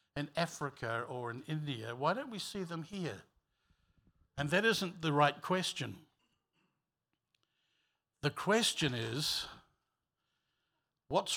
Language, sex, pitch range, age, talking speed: English, male, 120-150 Hz, 60-79, 110 wpm